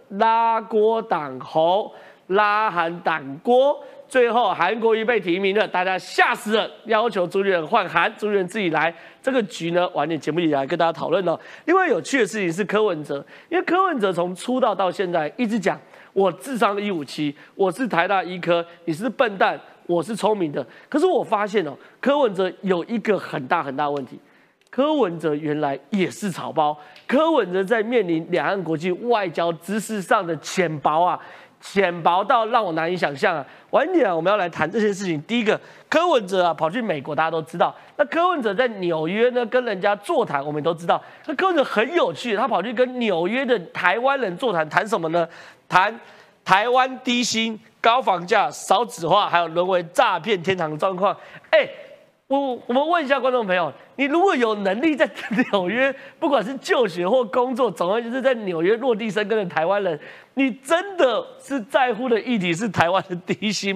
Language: Chinese